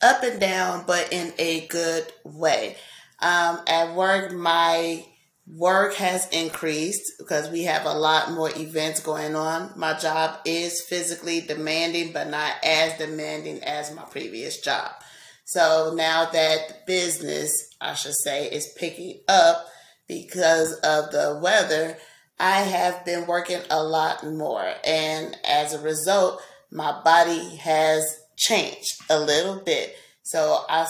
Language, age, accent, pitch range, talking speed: English, 30-49, American, 155-175 Hz, 140 wpm